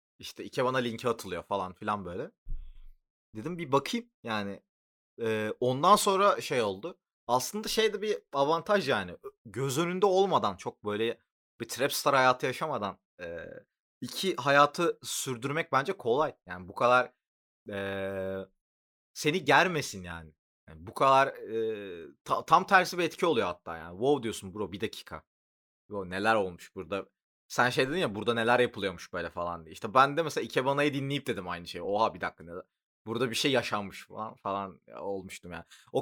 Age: 30-49